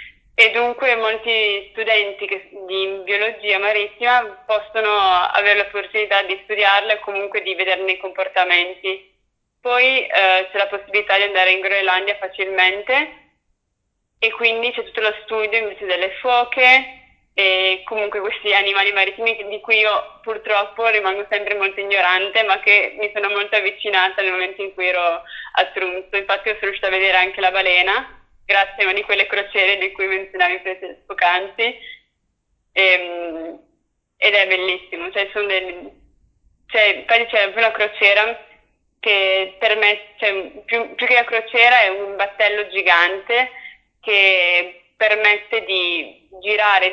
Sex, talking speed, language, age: female, 140 wpm, Italian, 20-39